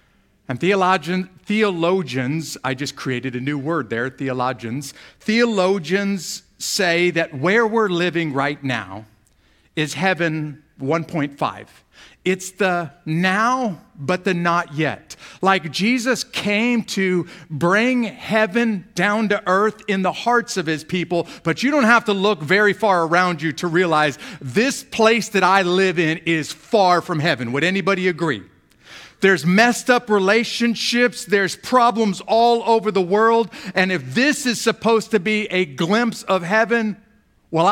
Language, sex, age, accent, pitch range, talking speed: English, male, 50-69, American, 155-210 Hz, 145 wpm